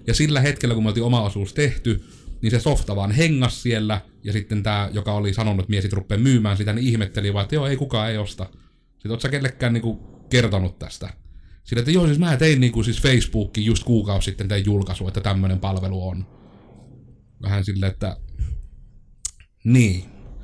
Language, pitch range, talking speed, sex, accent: Finnish, 100-115 Hz, 185 wpm, male, native